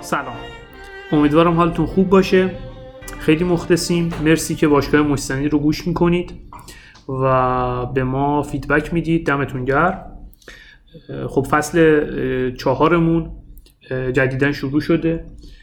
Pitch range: 135-165 Hz